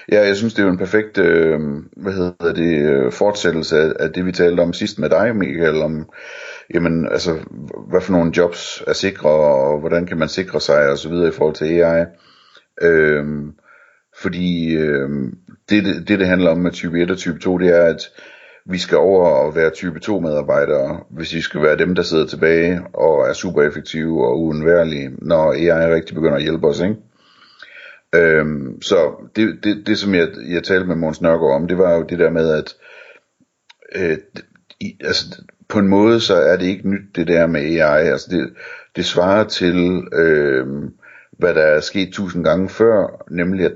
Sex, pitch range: male, 80-95 Hz